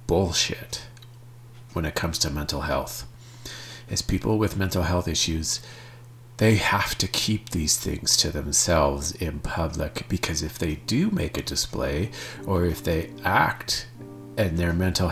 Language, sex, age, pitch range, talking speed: English, male, 40-59, 85-120 Hz, 145 wpm